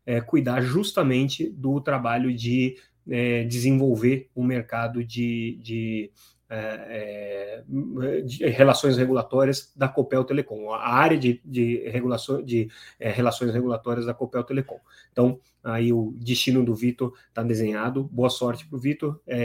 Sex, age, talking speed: male, 30-49, 145 wpm